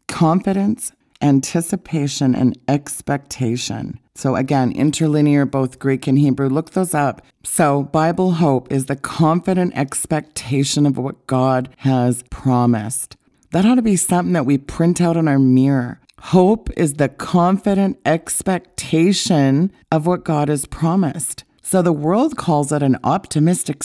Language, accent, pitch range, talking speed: English, American, 130-165 Hz, 140 wpm